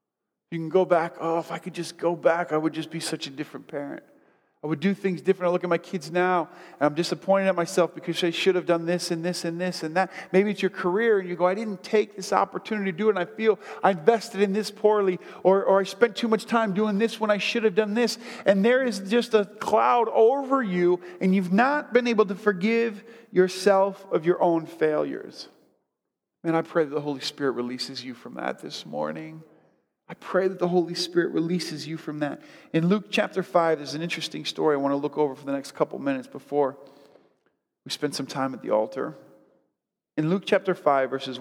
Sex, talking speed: male, 230 wpm